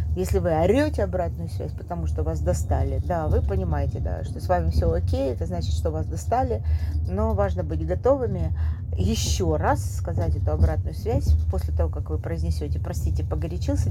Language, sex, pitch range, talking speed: Russian, female, 85-95 Hz, 175 wpm